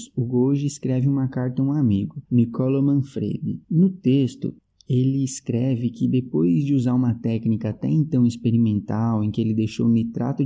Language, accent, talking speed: Portuguese, Brazilian, 160 wpm